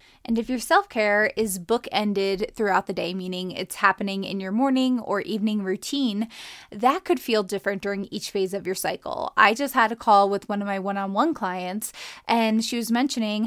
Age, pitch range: 20-39, 200-230 Hz